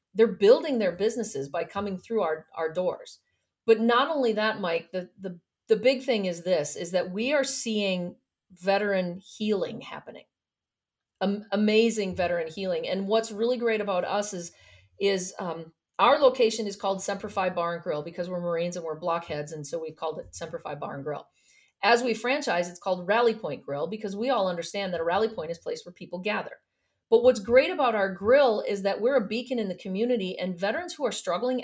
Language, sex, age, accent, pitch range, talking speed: English, female, 40-59, American, 175-225 Hz, 205 wpm